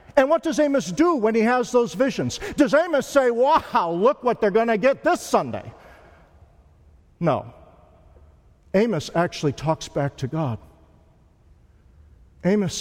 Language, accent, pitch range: English, American, 170-270 Hz